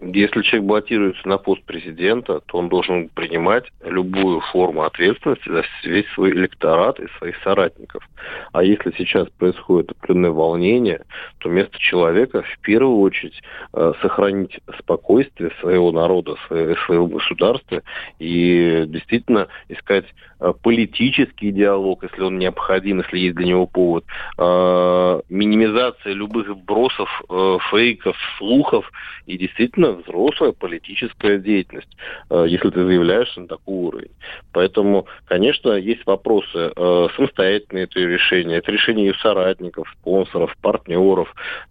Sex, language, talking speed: male, Russian, 115 wpm